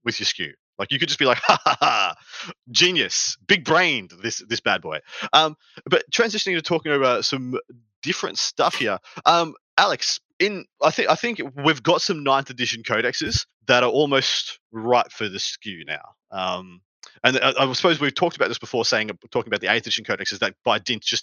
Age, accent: 30-49, Australian